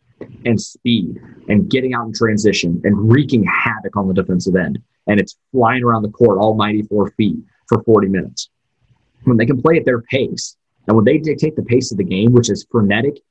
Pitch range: 105-130 Hz